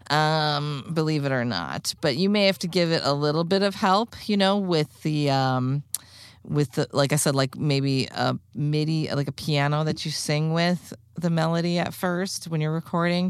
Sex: female